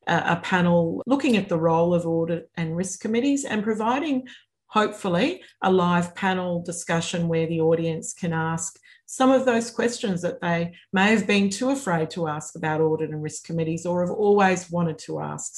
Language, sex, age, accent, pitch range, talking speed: English, female, 40-59, Australian, 160-200 Hz, 180 wpm